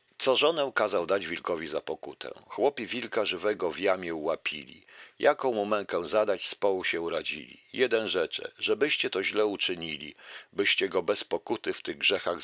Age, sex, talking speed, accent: 50-69, male, 165 wpm, native